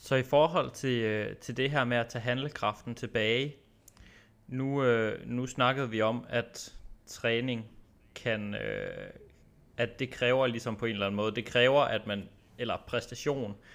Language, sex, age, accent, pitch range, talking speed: Danish, male, 20-39, native, 110-125 Hz, 155 wpm